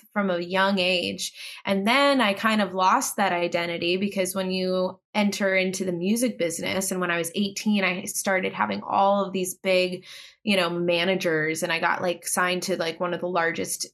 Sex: female